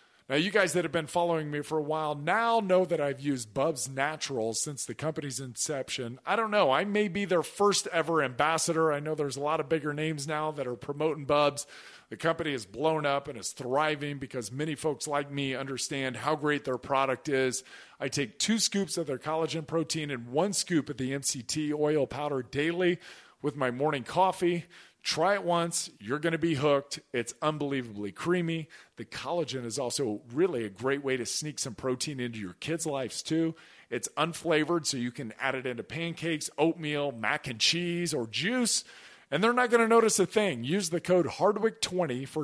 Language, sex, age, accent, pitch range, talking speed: English, male, 40-59, American, 135-170 Hz, 200 wpm